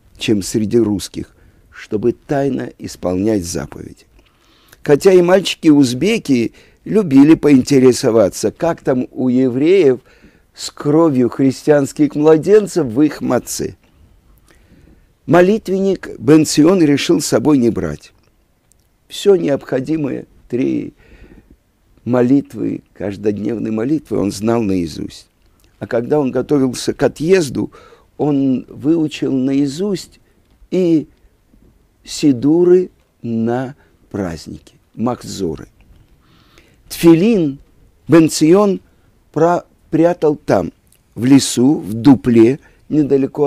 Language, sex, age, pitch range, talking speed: Russian, male, 50-69, 115-160 Hz, 85 wpm